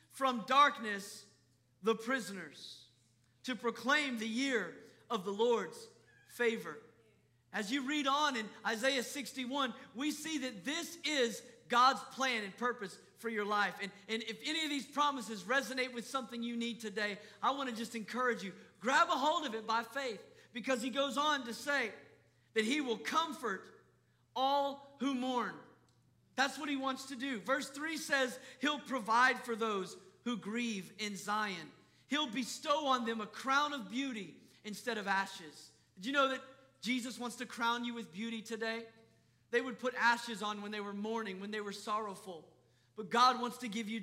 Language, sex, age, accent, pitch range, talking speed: English, male, 40-59, American, 210-270 Hz, 175 wpm